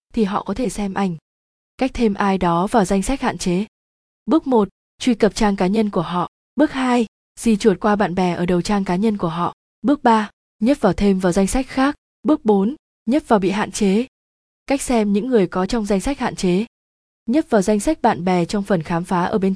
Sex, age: female, 20-39